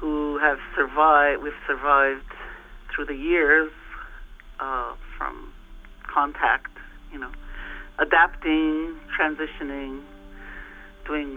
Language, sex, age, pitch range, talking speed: English, male, 50-69, 135-165 Hz, 85 wpm